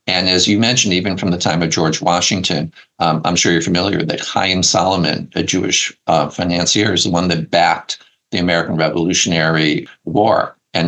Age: 50-69